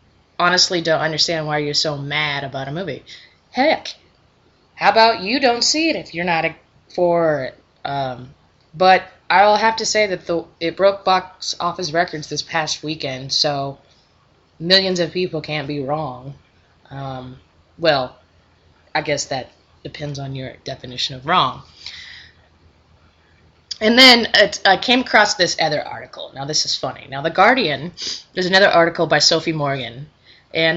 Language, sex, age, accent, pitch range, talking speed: English, female, 20-39, American, 140-180 Hz, 155 wpm